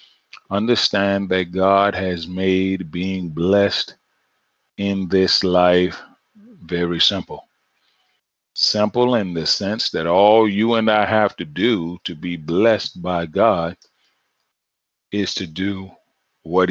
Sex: male